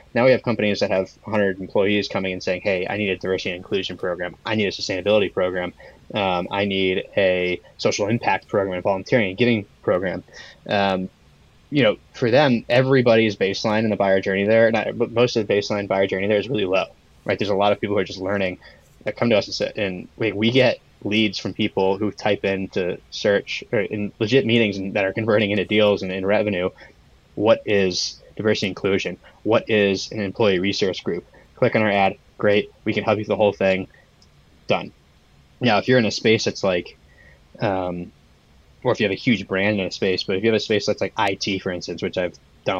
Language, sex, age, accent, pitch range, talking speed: English, male, 20-39, American, 95-110 Hz, 225 wpm